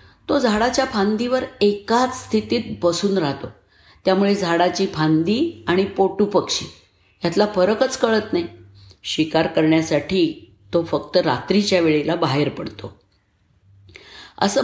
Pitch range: 170-230 Hz